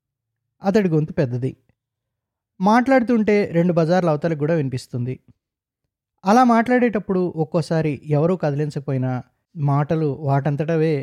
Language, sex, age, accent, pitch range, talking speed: English, male, 20-39, Indian, 135-195 Hz, 115 wpm